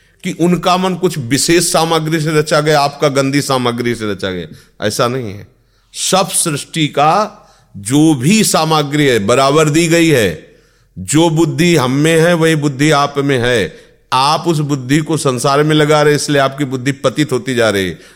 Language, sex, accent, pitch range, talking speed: Hindi, male, native, 110-150 Hz, 160 wpm